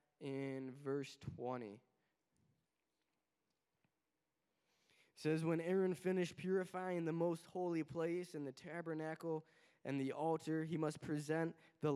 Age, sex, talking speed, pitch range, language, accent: 20-39, male, 115 wpm, 135-175 Hz, English, American